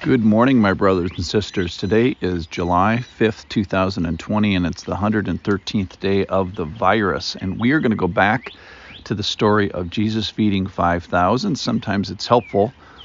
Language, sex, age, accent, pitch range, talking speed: English, male, 50-69, American, 90-115 Hz, 165 wpm